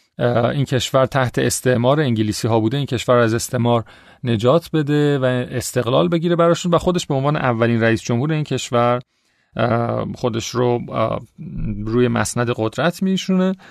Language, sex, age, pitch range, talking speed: Persian, male, 40-59, 120-165 Hz, 145 wpm